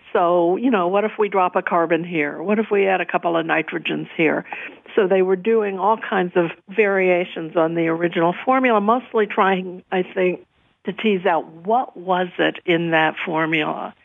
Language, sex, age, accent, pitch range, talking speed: English, female, 60-79, American, 170-215 Hz, 190 wpm